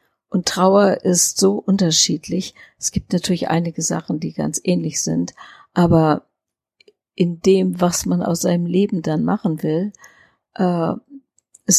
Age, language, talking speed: 50-69, German, 130 wpm